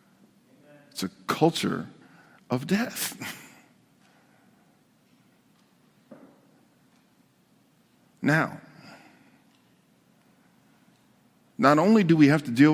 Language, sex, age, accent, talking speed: English, male, 50-69, American, 60 wpm